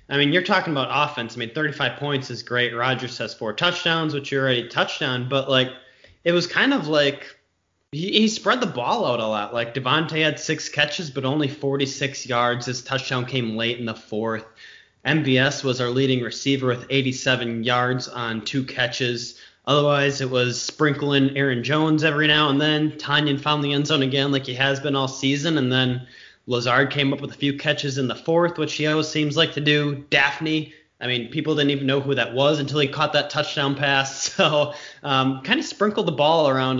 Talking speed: 205 wpm